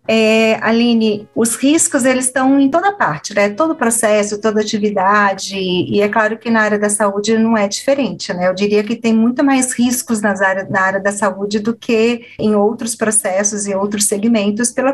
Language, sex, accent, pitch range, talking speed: Portuguese, female, Brazilian, 200-230 Hz, 195 wpm